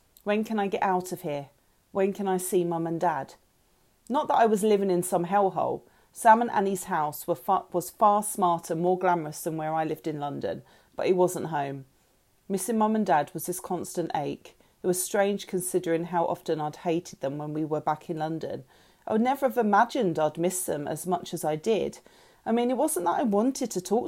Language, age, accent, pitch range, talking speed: English, 40-59, British, 165-215 Hz, 215 wpm